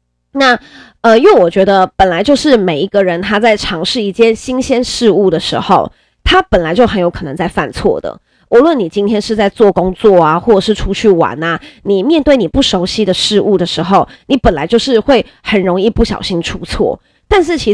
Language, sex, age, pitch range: Chinese, female, 20-39, 180-220 Hz